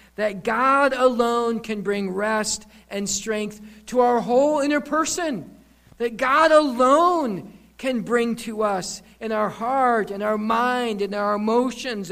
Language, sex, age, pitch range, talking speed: English, male, 50-69, 190-220 Hz, 145 wpm